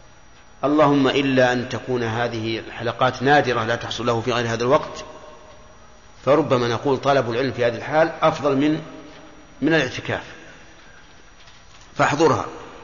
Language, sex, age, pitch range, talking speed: Arabic, male, 50-69, 125-150 Hz, 120 wpm